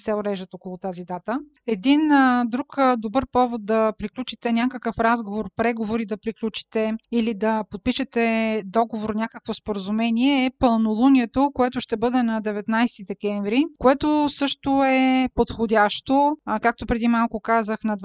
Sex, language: female, Bulgarian